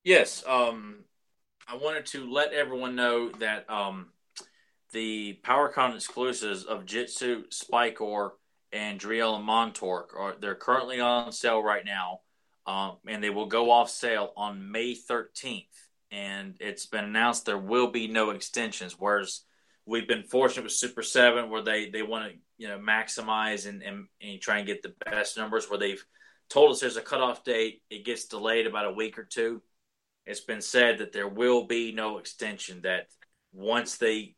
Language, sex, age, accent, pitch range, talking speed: English, male, 20-39, American, 105-120 Hz, 170 wpm